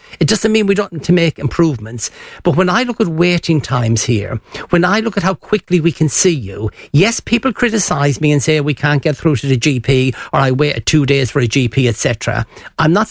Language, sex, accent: English, male, Irish